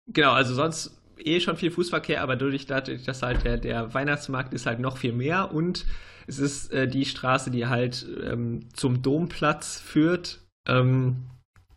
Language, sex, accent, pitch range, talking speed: German, male, German, 120-150 Hz, 165 wpm